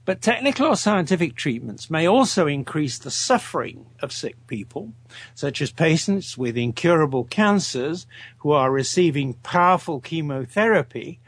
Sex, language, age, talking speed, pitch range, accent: male, English, 60-79, 130 wpm, 125-185 Hz, British